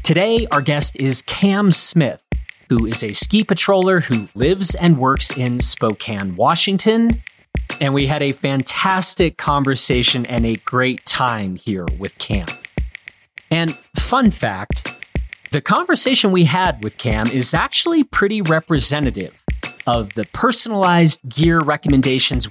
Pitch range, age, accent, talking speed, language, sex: 120-175 Hz, 40-59, American, 130 wpm, English, male